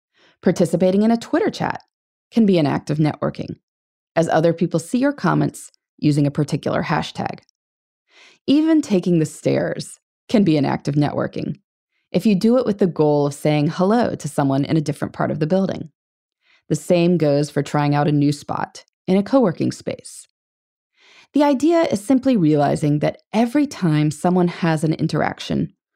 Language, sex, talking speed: English, female, 175 wpm